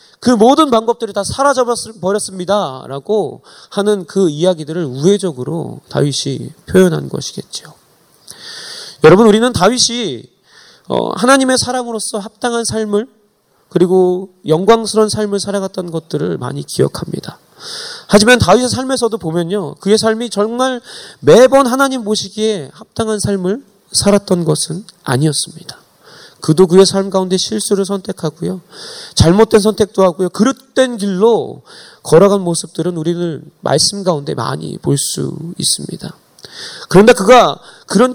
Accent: native